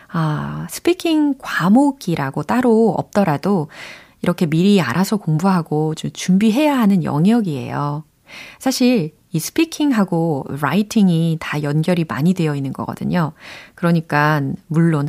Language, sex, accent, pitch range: Korean, female, native, 155-215 Hz